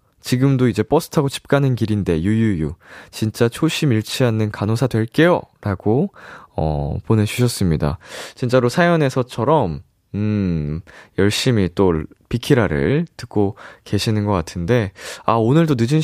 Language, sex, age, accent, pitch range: Korean, male, 20-39, native, 95-135 Hz